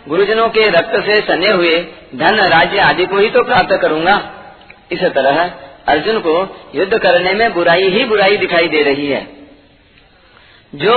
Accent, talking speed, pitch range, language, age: native, 160 wpm, 170-225 Hz, Hindi, 40-59